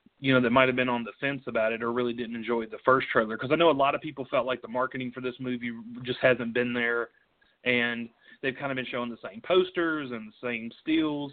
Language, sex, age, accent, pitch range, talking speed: English, male, 30-49, American, 120-140 Hz, 260 wpm